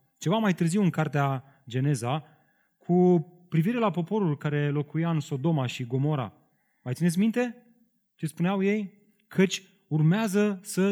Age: 30-49